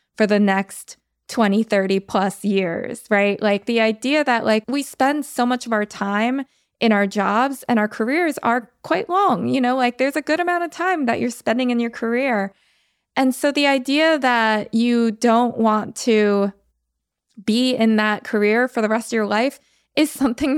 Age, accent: 20-39, American